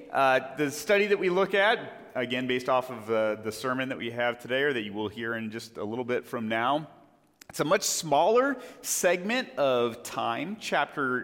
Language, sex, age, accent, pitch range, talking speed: English, male, 30-49, American, 120-165 Hz, 205 wpm